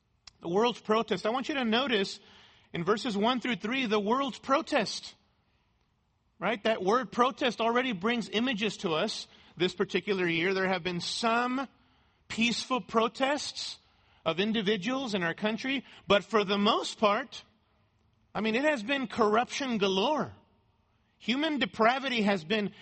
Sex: male